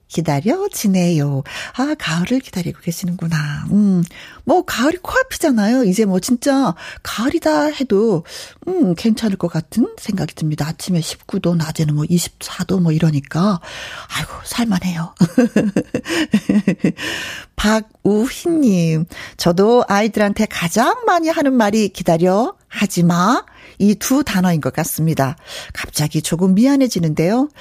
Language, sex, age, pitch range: Korean, female, 40-59, 175-265 Hz